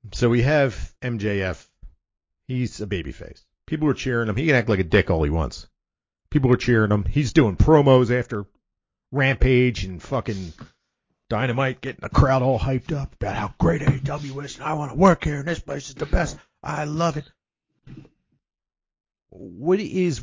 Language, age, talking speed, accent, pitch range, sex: English, 40-59, 180 wpm, American, 105-150 Hz, male